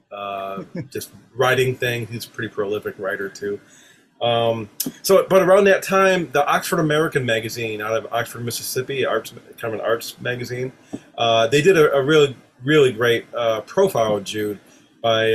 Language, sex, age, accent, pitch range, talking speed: English, male, 30-49, American, 115-145 Hz, 170 wpm